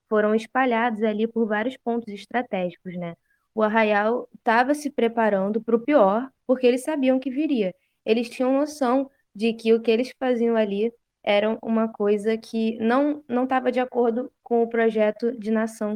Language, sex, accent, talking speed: Portuguese, female, Brazilian, 170 wpm